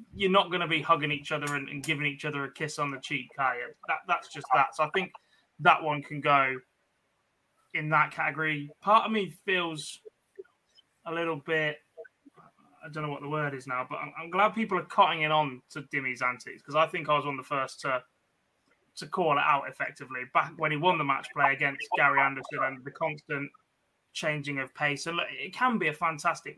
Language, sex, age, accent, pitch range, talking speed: English, male, 20-39, British, 145-175 Hz, 215 wpm